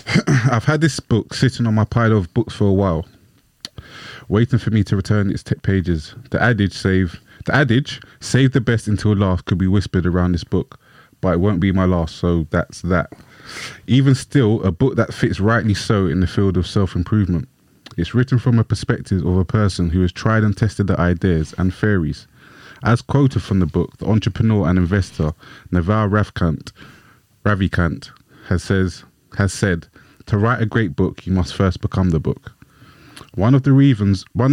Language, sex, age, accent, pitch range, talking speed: English, male, 20-39, British, 90-115 Hz, 185 wpm